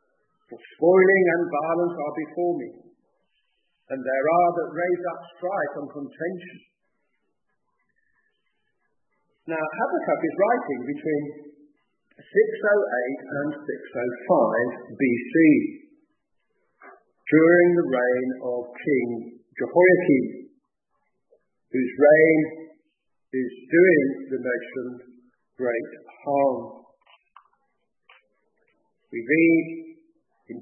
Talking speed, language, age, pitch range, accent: 80 wpm, English, 50-69, 145-195 Hz, British